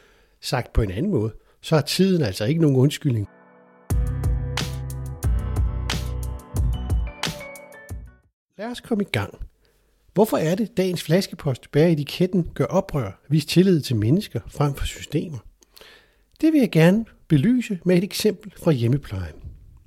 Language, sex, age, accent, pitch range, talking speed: Danish, male, 60-79, native, 120-175 Hz, 130 wpm